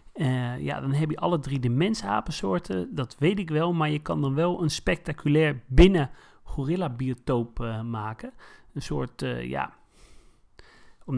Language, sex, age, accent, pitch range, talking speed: Dutch, male, 40-59, Dutch, 130-165 Hz, 155 wpm